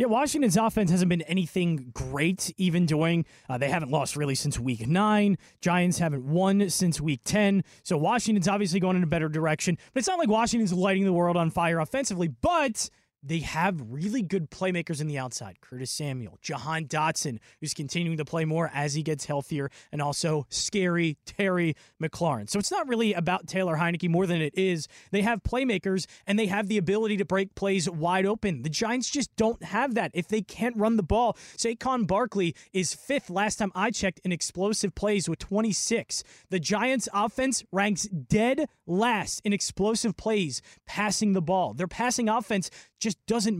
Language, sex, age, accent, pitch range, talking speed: English, male, 20-39, American, 170-215 Hz, 185 wpm